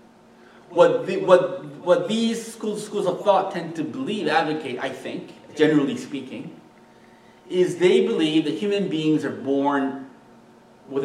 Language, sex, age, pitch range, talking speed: English, male, 30-49, 135-200 Hz, 140 wpm